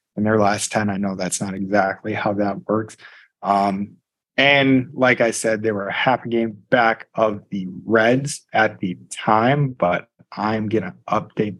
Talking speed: 175 wpm